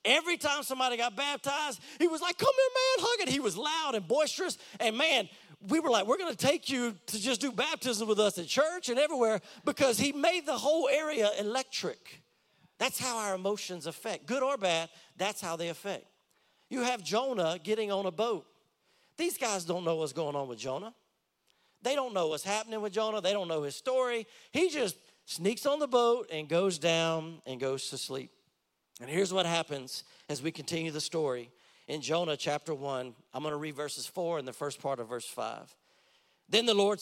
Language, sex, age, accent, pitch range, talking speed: English, male, 40-59, American, 150-235 Hz, 205 wpm